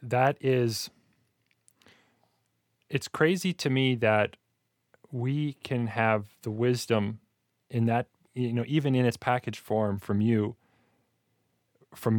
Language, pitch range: English, 110-130 Hz